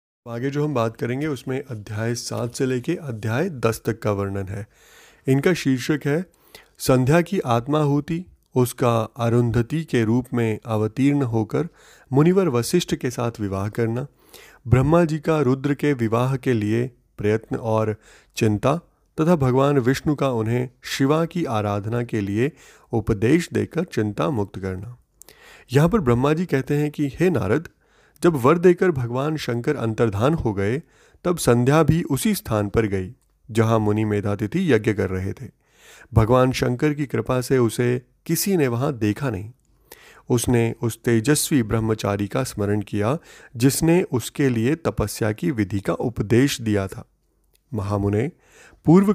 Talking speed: 150 wpm